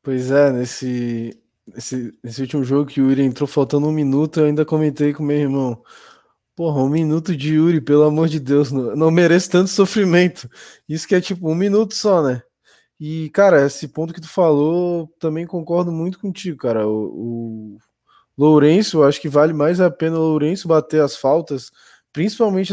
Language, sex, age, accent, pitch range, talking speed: Portuguese, male, 20-39, Brazilian, 145-180 Hz, 185 wpm